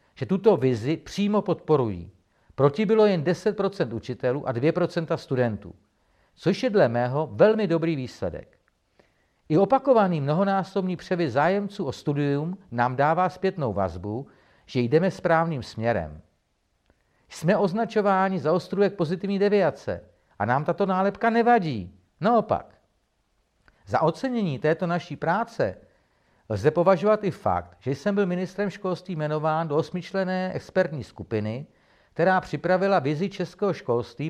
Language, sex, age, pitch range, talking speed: Czech, male, 50-69, 125-185 Hz, 125 wpm